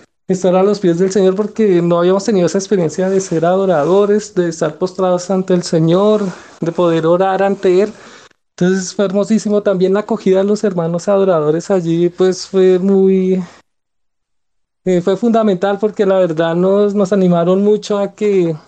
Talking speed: 165 wpm